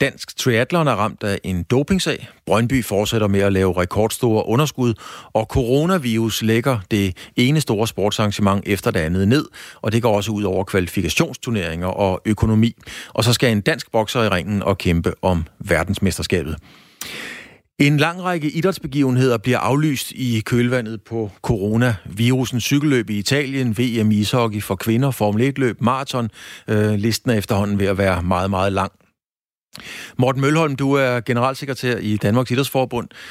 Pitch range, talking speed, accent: 105-130 Hz, 150 wpm, native